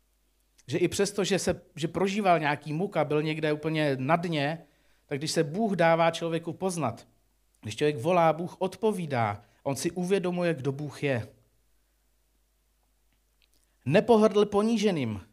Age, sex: 50-69, male